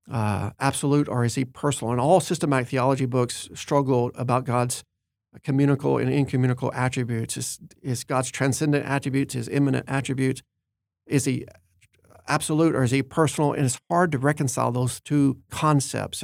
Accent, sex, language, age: American, male, English, 50-69